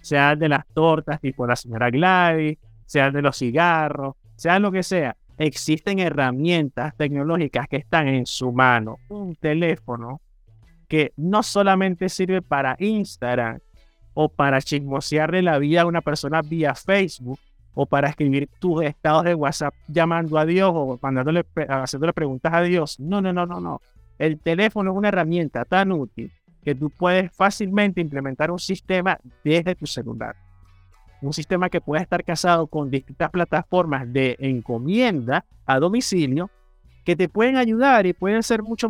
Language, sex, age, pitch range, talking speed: Spanish, male, 30-49, 140-185 Hz, 155 wpm